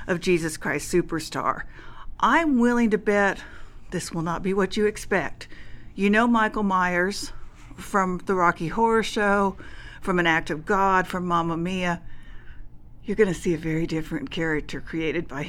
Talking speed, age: 165 wpm, 60-79